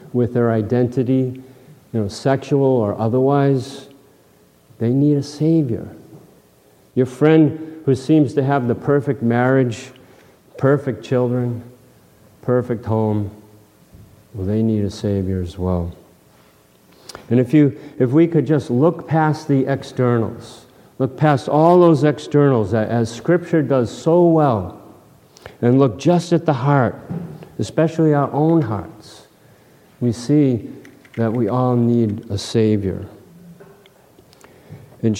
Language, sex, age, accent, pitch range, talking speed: English, male, 50-69, American, 110-140 Hz, 125 wpm